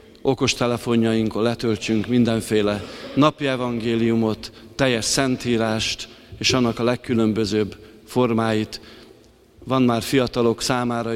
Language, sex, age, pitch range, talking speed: Hungarian, male, 50-69, 105-125 Hz, 85 wpm